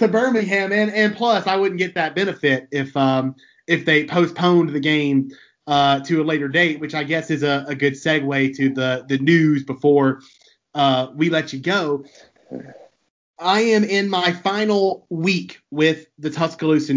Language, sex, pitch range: English, male, 135-160 Hz